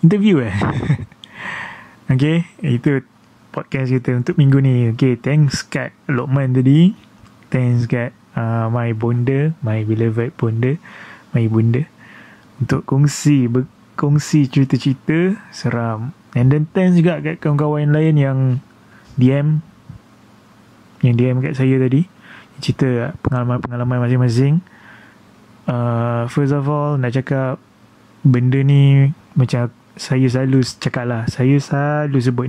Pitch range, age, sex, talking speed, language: 125-150 Hz, 20-39, male, 115 wpm, Malay